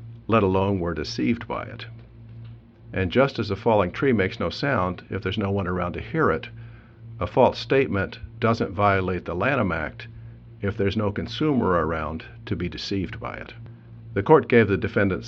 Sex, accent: male, American